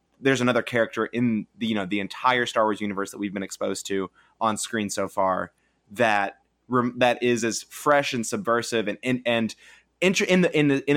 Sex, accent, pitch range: male, American, 100-120 Hz